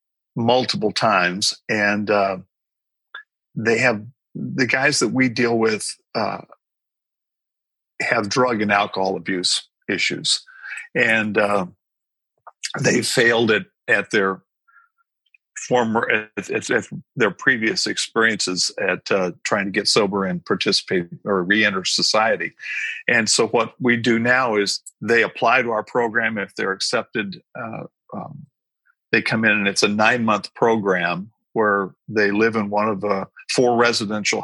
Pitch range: 105-125 Hz